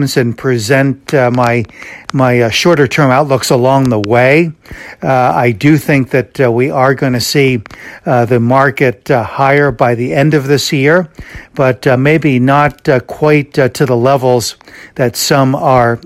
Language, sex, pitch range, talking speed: English, male, 125-150 Hz, 170 wpm